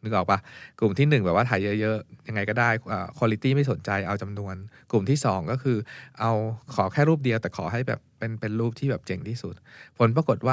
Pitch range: 105-135 Hz